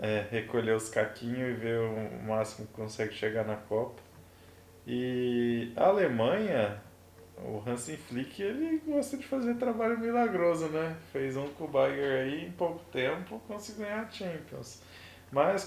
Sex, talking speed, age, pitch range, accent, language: male, 150 wpm, 20-39, 105-140 Hz, Brazilian, Portuguese